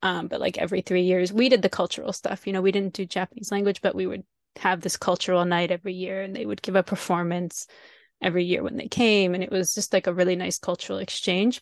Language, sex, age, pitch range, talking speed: English, female, 20-39, 185-235 Hz, 250 wpm